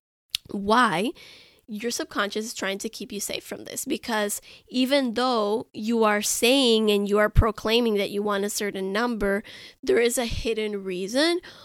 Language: English